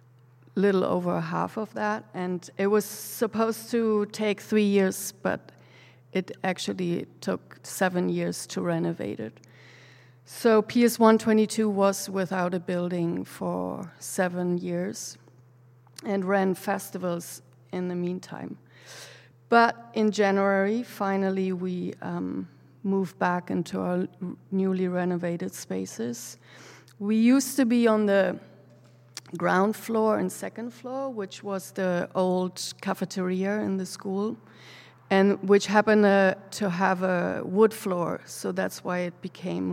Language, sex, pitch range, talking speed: English, female, 130-200 Hz, 125 wpm